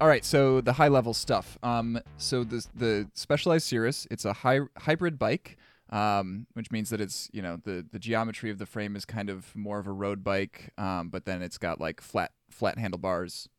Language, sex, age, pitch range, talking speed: English, male, 20-39, 100-120 Hz, 210 wpm